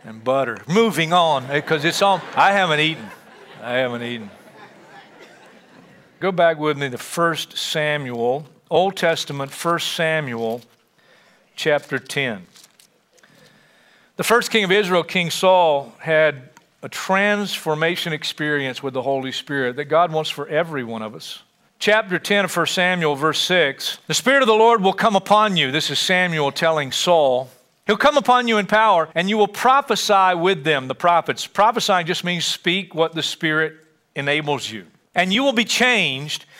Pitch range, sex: 150-215 Hz, male